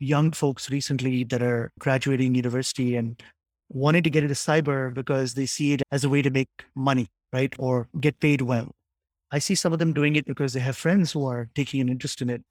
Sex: male